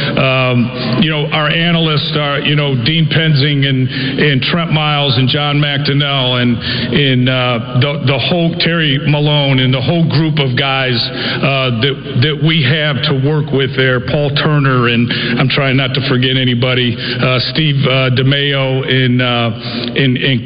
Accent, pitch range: American, 135-155 Hz